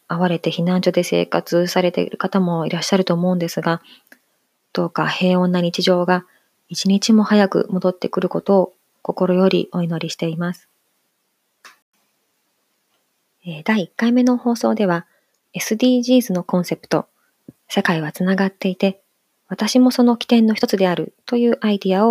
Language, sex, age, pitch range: Japanese, female, 20-39, 175-215 Hz